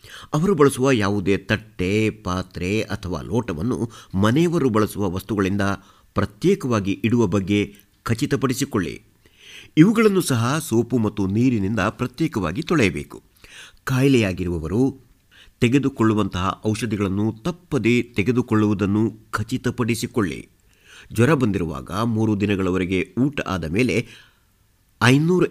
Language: Kannada